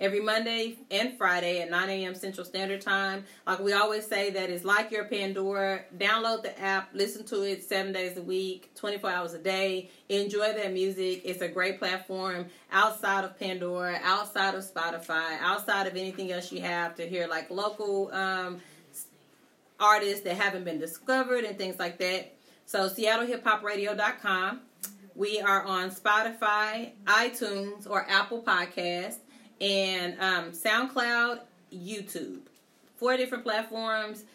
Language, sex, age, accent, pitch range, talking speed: English, female, 30-49, American, 185-215 Hz, 145 wpm